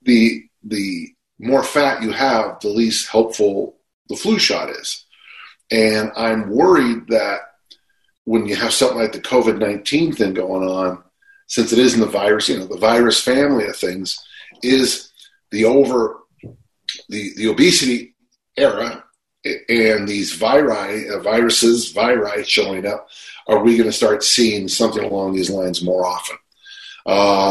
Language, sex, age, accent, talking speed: English, male, 40-59, American, 150 wpm